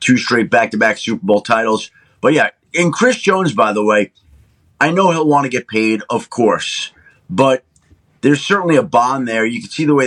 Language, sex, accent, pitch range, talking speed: English, male, American, 110-150 Hz, 205 wpm